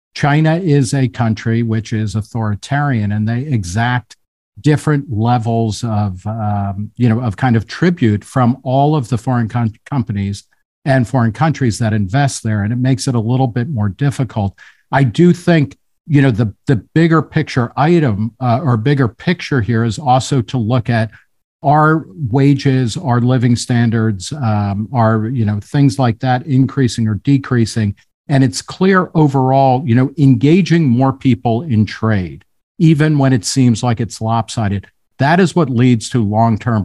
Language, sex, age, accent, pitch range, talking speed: English, male, 50-69, American, 110-140 Hz, 165 wpm